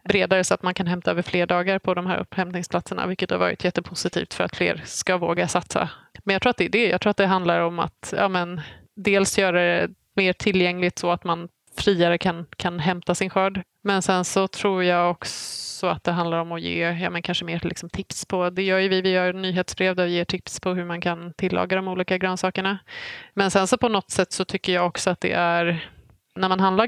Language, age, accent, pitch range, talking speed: Swedish, 20-39, native, 175-190 Hz, 235 wpm